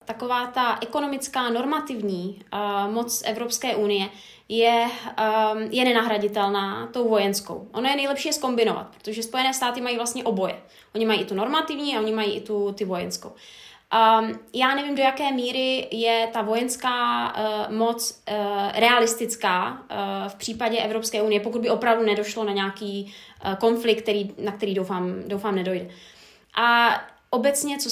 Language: Czech